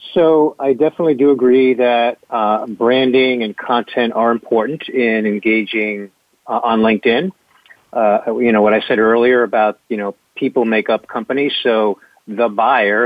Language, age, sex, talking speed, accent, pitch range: English, 50-69, male, 155 wpm, American, 110-135 Hz